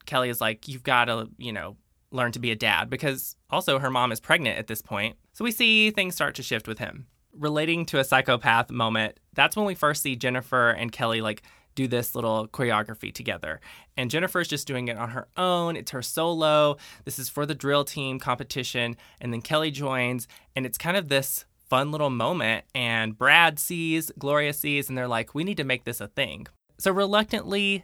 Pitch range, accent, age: 120-155 Hz, American, 20-39